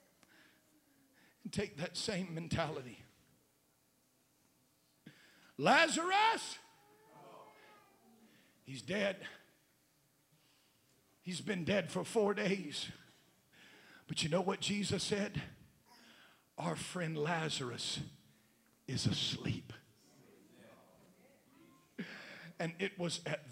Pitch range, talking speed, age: 145-195 Hz, 70 wpm, 50-69